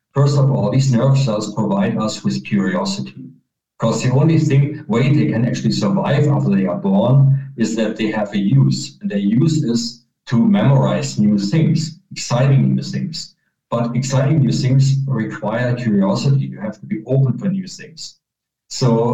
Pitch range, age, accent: 110-155 Hz, 50-69, German